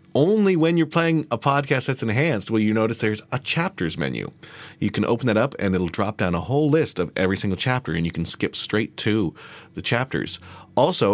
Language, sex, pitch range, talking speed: English, male, 95-125 Hz, 215 wpm